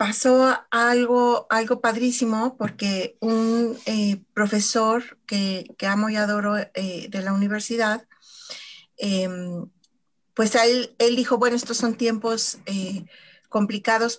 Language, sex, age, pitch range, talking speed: Spanish, female, 40-59, 205-255 Hz, 120 wpm